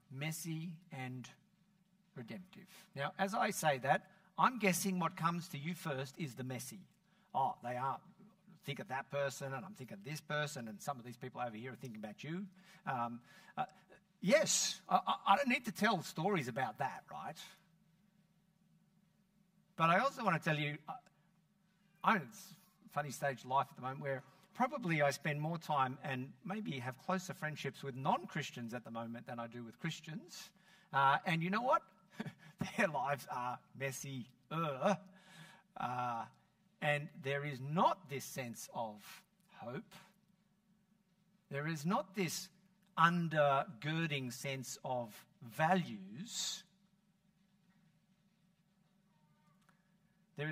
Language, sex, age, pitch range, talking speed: English, male, 50-69, 145-190 Hz, 145 wpm